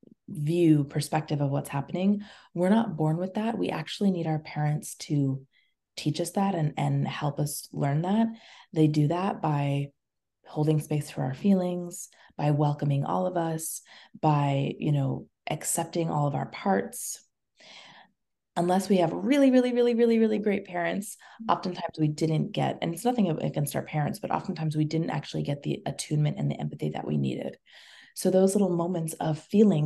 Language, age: English, 20-39